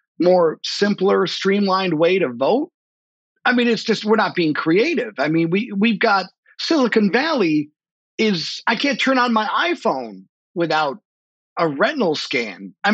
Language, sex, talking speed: English, male, 155 wpm